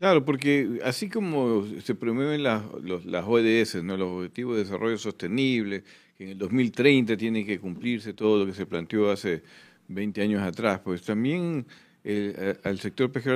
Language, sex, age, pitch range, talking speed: Spanish, male, 50-69, 100-125 Hz, 175 wpm